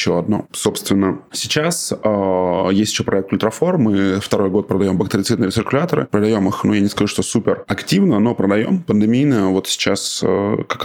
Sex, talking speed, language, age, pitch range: male, 170 wpm, Russian, 20-39, 95-115 Hz